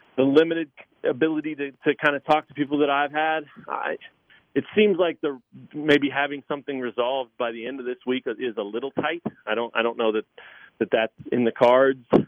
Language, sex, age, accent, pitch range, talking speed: English, male, 40-59, American, 110-140 Hz, 210 wpm